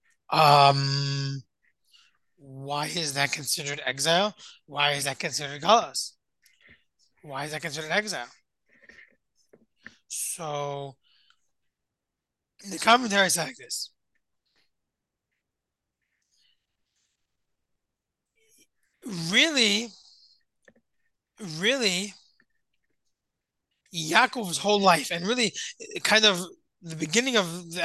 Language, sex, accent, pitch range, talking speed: English, male, American, 150-210 Hz, 75 wpm